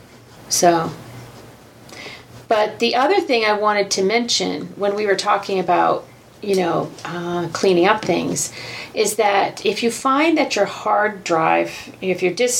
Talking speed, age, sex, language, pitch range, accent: 155 wpm, 40-59, female, English, 165-195 Hz, American